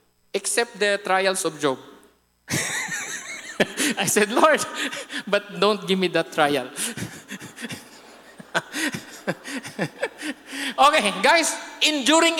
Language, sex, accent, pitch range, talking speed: English, male, Filipino, 210-290 Hz, 80 wpm